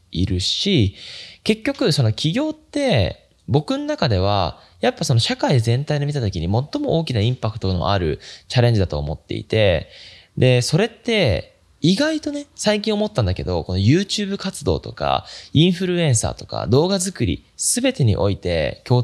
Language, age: Japanese, 20-39